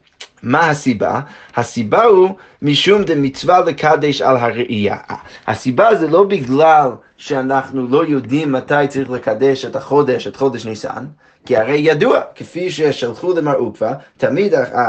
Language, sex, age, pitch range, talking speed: Hebrew, male, 30-49, 130-170 Hz, 135 wpm